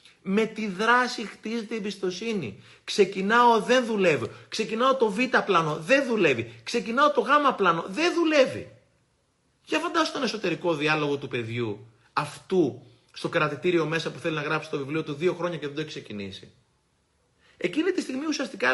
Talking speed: 160 wpm